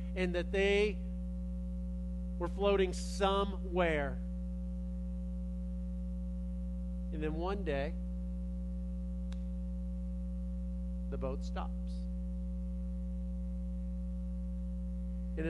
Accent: American